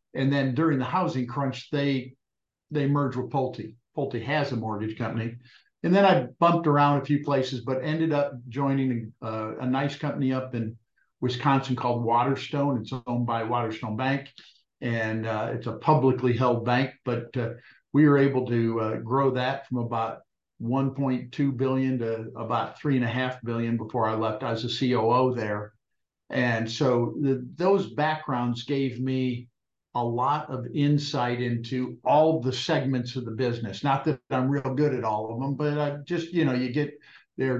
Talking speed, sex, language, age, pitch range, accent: 170 wpm, male, English, 50-69, 120-145 Hz, American